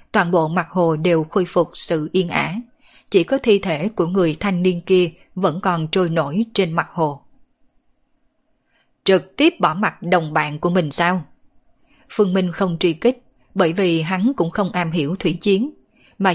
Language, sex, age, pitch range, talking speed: Vietnamese, female, 20-39, 170-220 Hz, 185 wpm